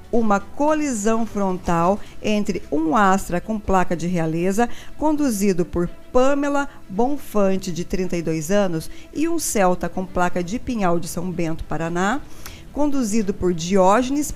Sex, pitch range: female, 180-235 Hz